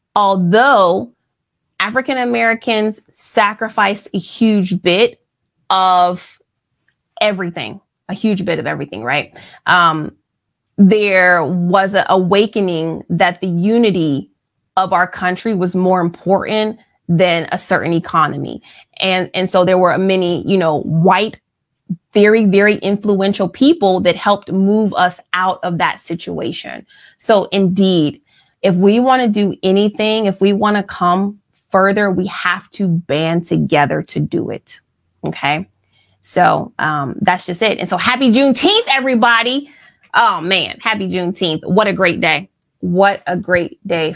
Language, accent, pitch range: English, American, 180-235 Hz